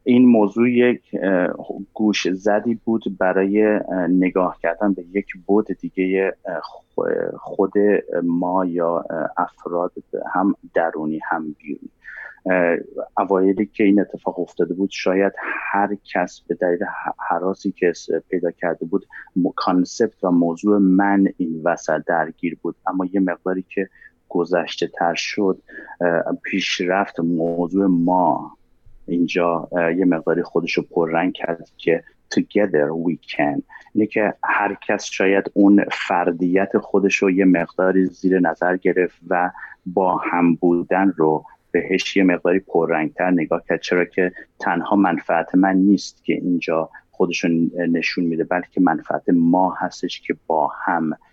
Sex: male